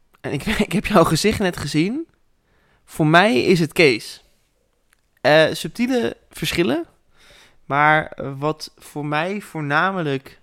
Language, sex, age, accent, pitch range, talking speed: Dutch, male, 20-39, Dutch, 145-185 Hz, 120 wpm